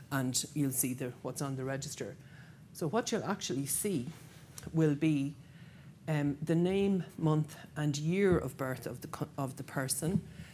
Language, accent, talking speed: English, Irish, 165 wpm